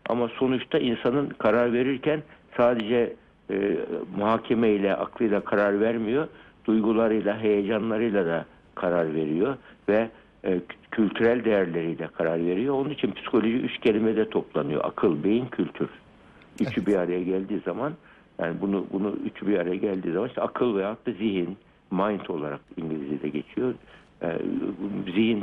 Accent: native